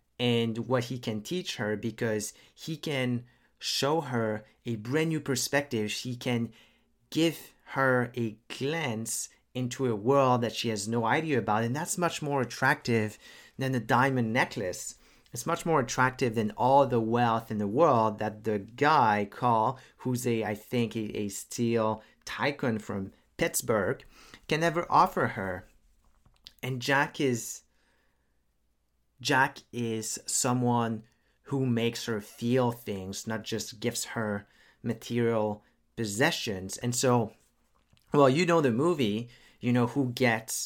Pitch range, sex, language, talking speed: 110-130 Hz, male, English, 140 wpm